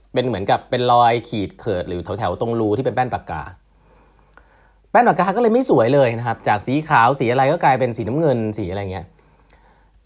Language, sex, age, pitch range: Thai, male, 30-49, 100-155 Hz